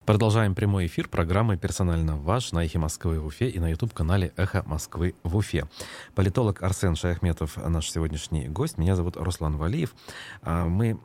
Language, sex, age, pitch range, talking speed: Russian, male, 30-49, 85-110 Hz, 160 wpm